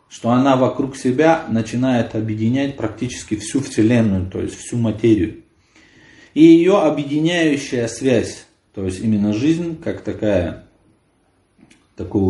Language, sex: Ukrainian, male